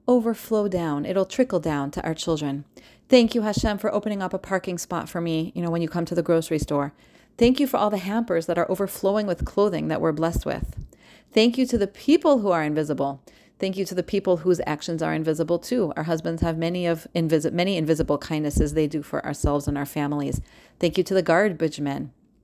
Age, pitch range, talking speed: 30-49, 160-195 Hz, 220 wpm